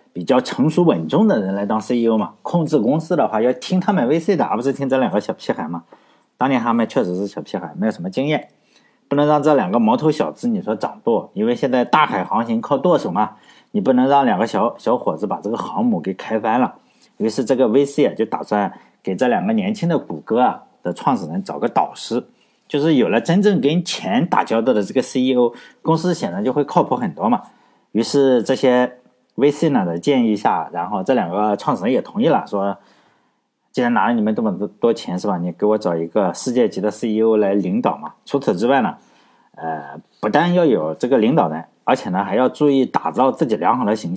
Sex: male